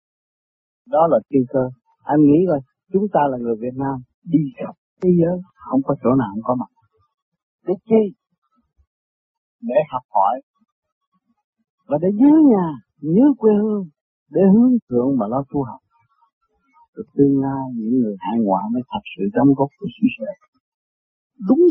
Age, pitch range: 50-69, 140-230 Hz